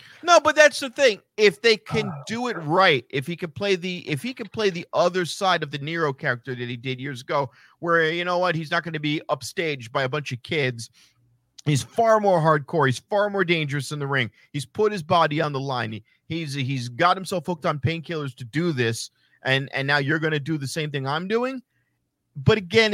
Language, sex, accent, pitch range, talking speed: English, male, American, 145-220 Hz, 235 wpm